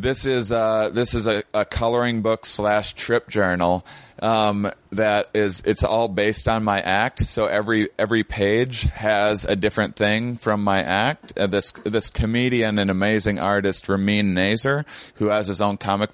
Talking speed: 175 wpm